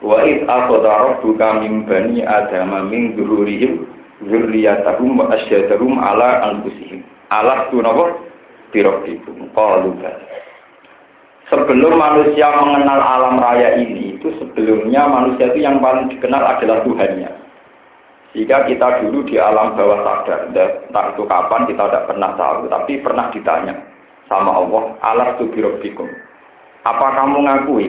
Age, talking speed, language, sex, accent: 50-69, 115 wpm, Indonesian, male, native